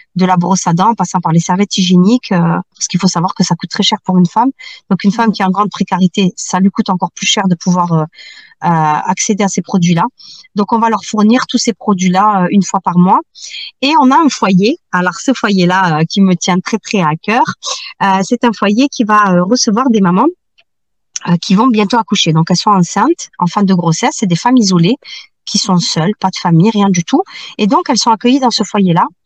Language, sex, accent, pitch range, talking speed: French, female, French, 185-235 Hz, 240 wpm